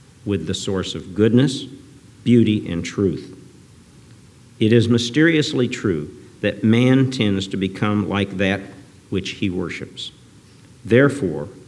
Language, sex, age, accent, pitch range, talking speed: English, male, 50-69, American, 95-125 Hz, 120 wpm